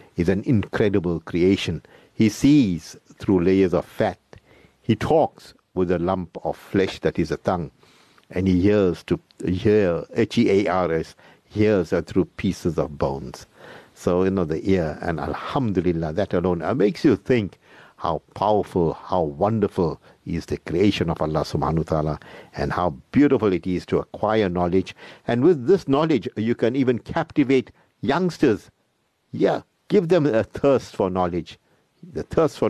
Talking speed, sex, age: 150 wpm, male, 60-79